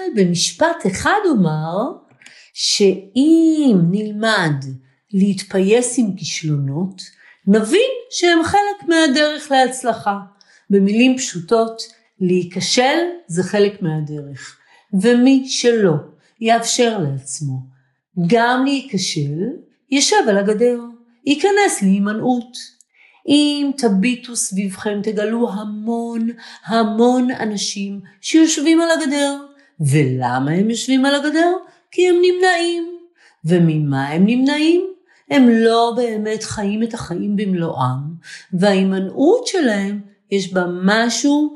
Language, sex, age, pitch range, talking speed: Hebrew, female, 50-69, 185-275 Hz, 90 wpm